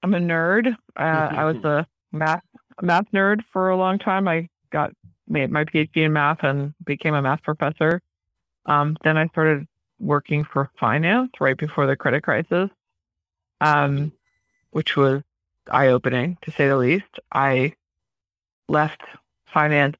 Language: English